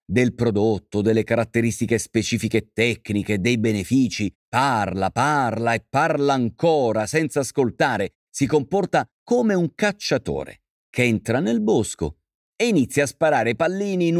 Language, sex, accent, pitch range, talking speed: Italian, male, native, 100-140 Hz, 125 wpm